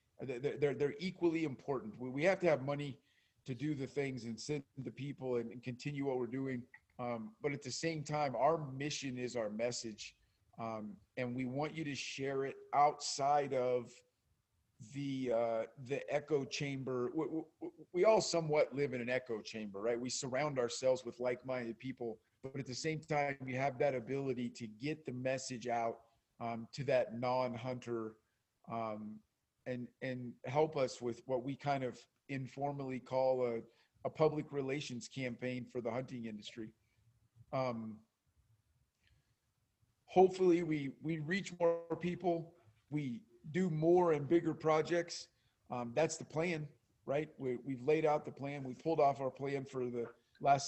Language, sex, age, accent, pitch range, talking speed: English, male, 40-59, American, 120-145 Hz, 160 wpm